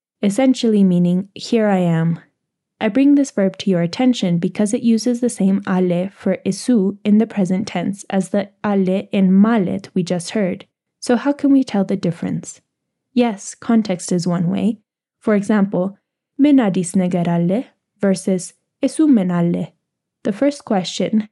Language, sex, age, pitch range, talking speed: English, female, 10-29, 185-225 Hz, 150 wpm